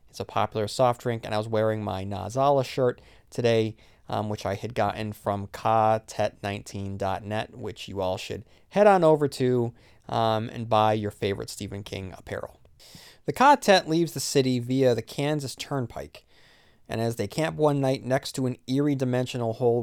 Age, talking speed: 30-49, 175 wpm